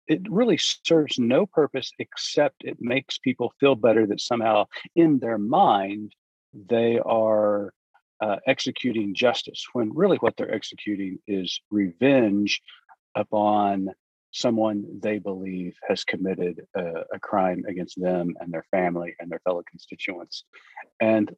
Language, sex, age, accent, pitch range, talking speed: English, male, 40-59, American, 90-115 Hz, 130 wpm